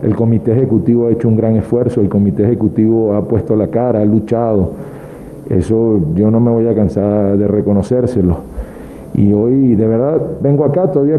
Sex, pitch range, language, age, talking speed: male, 110-135 Hz, Spanish, 50-69, 175 wpm